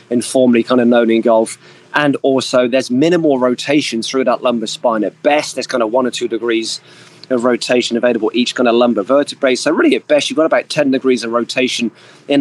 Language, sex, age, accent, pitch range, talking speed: English, male, 20-39, British, 115-145 Hz, 215 wpm